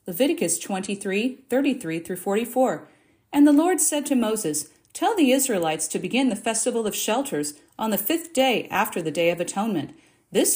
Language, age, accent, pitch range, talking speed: English, 50-69, American, 170-245 Hz, 170 wpm